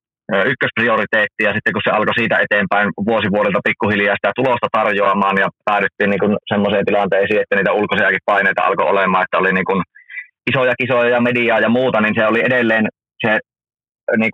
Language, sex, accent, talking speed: Finnish, male, native, 165 wpm